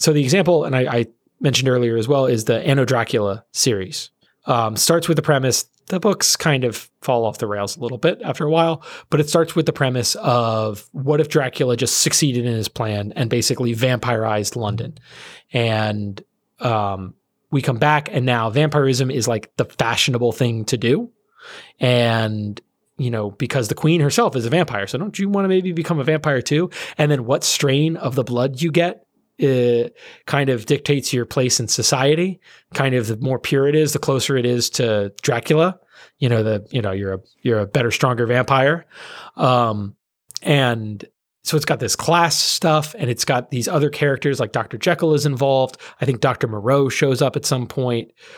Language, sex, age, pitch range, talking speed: English, male, 30-49, 120-150 Hz, 195 wpm